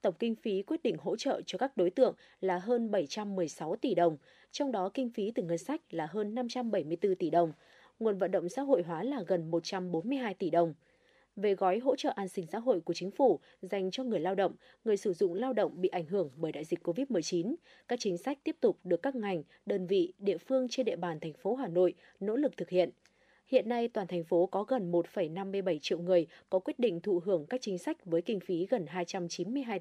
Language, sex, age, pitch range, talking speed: Vietnamese, female, 20-39, 180-245 Hz, 225 wpm